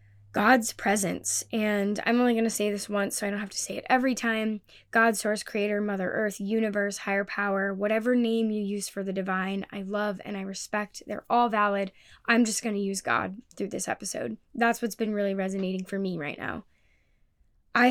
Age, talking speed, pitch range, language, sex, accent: 10-29, 205 wpm, 195-225 Hz, English, female, American